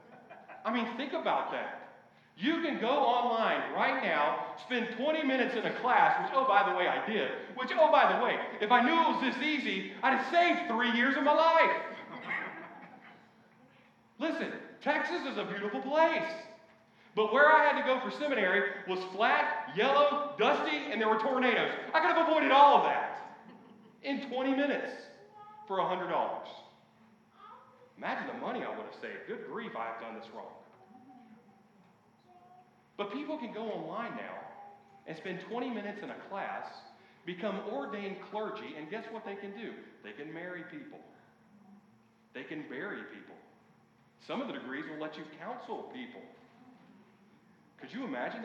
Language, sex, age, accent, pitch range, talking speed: English, male, 40-59, American, 205-290 Hz, 165 wpm